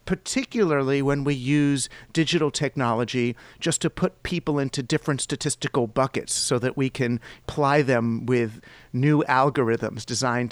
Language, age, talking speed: English, 40-59, 135 wpm